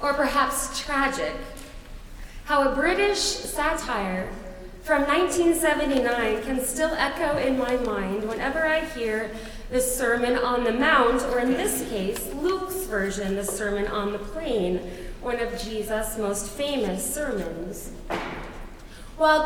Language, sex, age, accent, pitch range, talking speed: English, female, 30-49, American, 215-285 Hz, 125 wpm